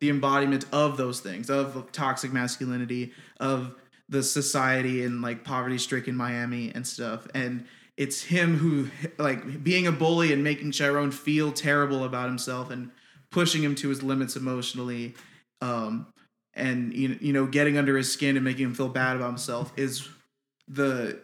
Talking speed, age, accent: 160 wpm, 20-39, American